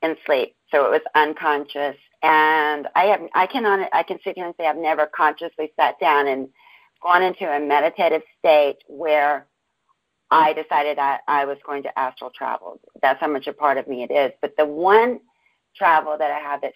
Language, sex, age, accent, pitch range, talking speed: English, female, 40-59, American, 140-165 Hz, 195 wpm